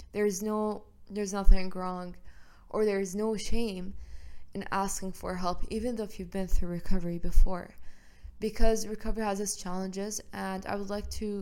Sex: female